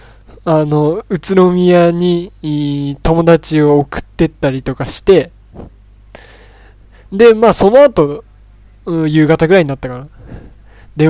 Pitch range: 115-170 Hz